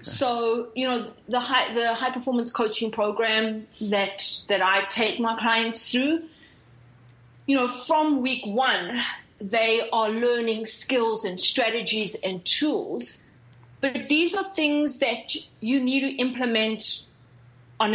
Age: 30-49